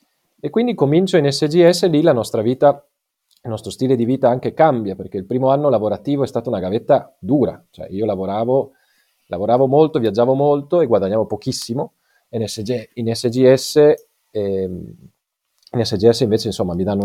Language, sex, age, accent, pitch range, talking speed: Italian, male, 40-59, native, 110-150 Hz, 160 wpm